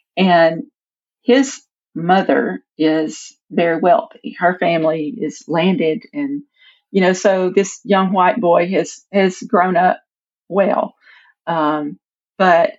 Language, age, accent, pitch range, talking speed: English, 40-59, American, 160-210 Hz, 115 wpm